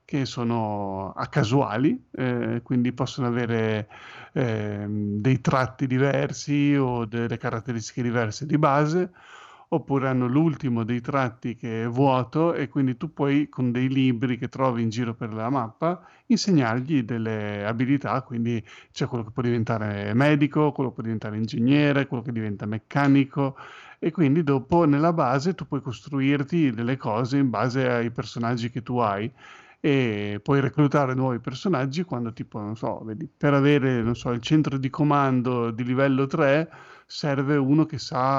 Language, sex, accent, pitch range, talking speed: Italian, male, native, 120-140 Hz, 155 wpm